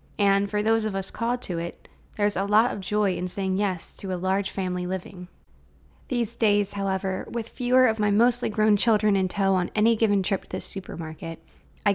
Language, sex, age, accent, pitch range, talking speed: English, female, 20-39, American, 180-220 Hz, 205 wpm